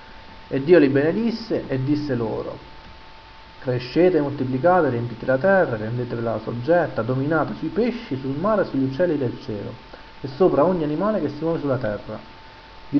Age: 30-49